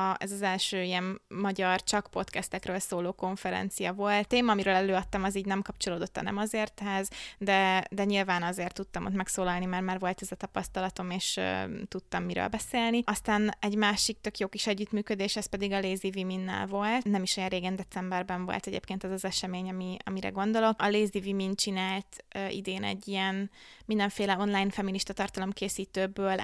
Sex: female